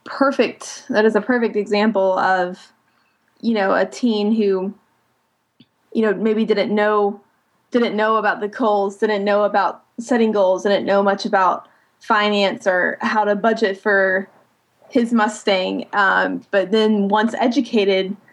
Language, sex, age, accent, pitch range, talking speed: English, female, 20-39, American, 200-240 Hz, 145 wpm